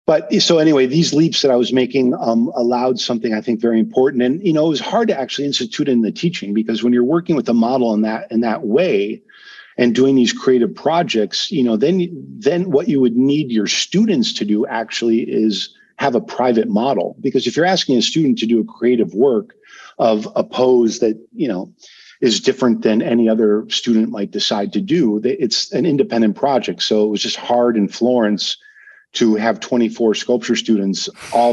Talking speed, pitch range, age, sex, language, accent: 205 wpm, 110-130 Hz, 50-69, male, English, American